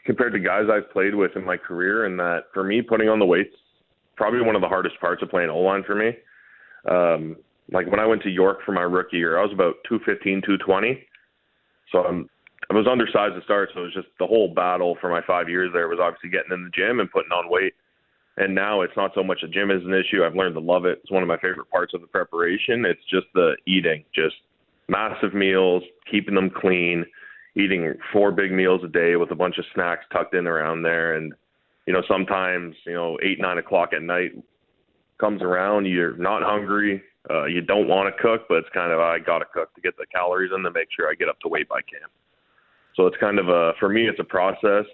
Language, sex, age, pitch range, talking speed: English, male, 20-39, 85-100 Hz, 240 wpm